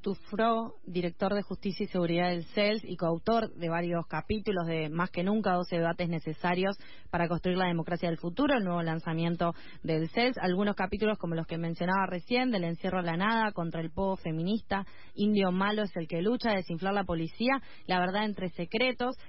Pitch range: 170-215 Hz